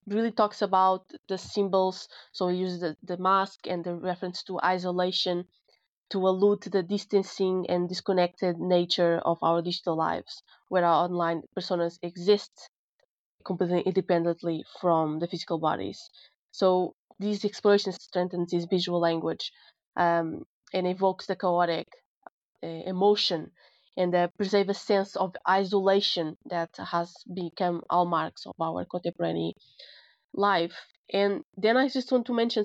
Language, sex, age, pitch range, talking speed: English, female, 20-39, 175-200 Hz, 140 wpm